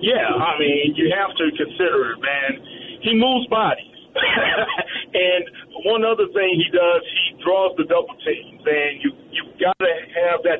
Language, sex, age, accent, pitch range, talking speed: English, male, 40-59, American, 155-200 Hz, 170 wpm